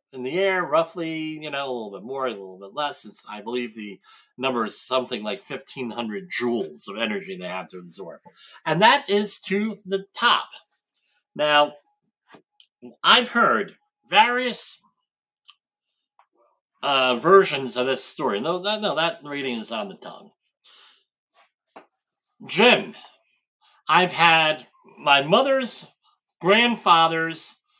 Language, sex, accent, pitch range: English, male, American, 145-215 Hz